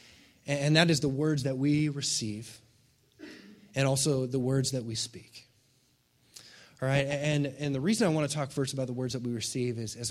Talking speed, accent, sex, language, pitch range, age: 200 wpm, American, male, English, 115-140 Hz, 20-39